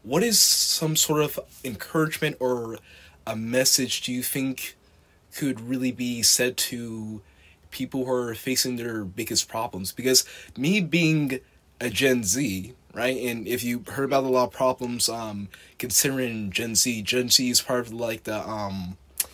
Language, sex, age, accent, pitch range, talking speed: English, male, 20-39, American, 105-130 Hz, 160 wpm